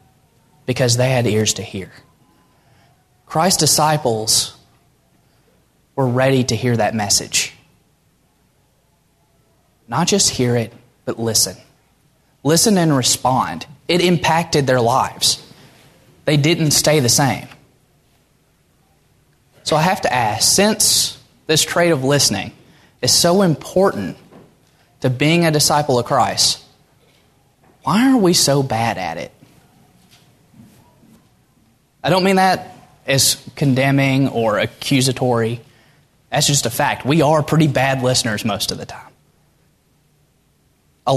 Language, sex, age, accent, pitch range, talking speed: English, male, 20-39, American, 125-155 Hz, 115 wpm